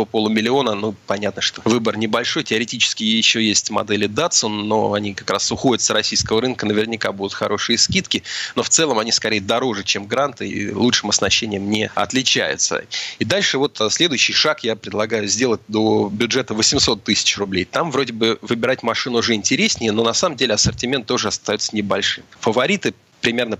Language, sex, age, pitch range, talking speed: Russian, male, 30-49, 105-125 Hz, 170 wpm